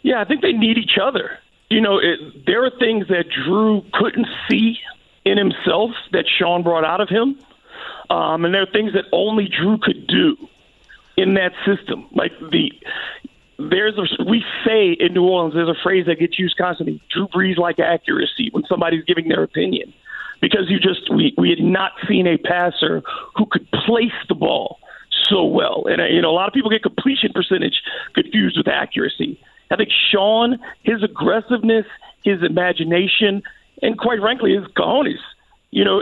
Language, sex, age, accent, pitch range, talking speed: English, male, 40-59, American, 180-230 Hz, 180 wpm